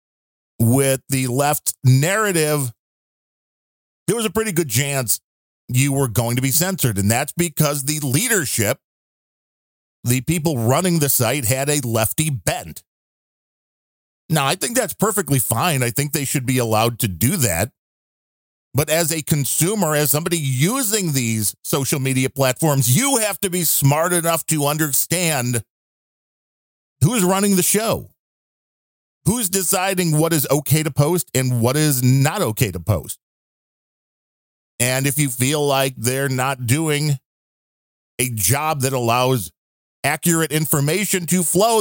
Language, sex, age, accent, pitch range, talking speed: English, male, 40-59, American, 125-165 Hz, 140 wpm